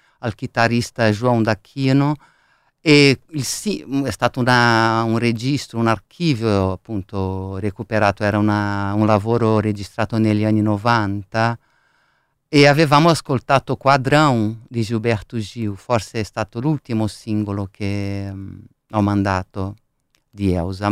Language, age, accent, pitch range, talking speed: Italian, 50-69, native, 105-125 Hz, 125 wpm